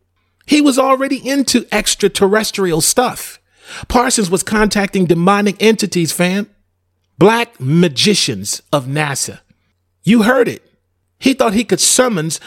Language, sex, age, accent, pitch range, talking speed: English, male, 40-59, American, 140-210 Hz, 115 wpm